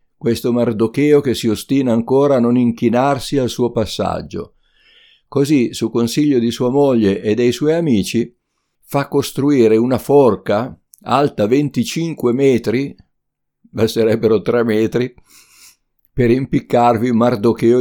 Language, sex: Italian, male